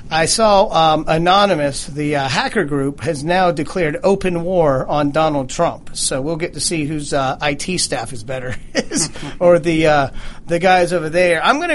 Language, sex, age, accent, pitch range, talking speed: English, male, 40-59, American, 150-190 Hz, 185 wpm